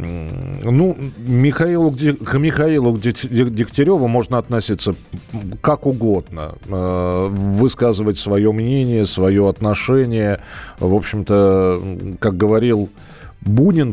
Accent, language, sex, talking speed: native, Russian, male, 80 wpm